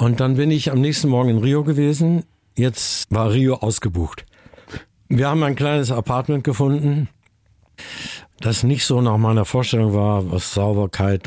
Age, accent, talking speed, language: 60-79, German, 155 wpm, German